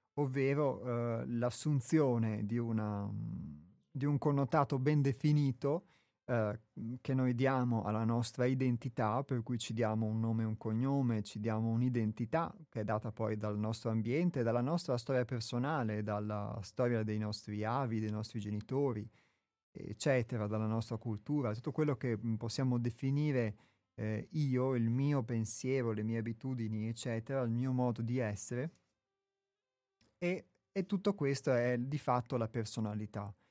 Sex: male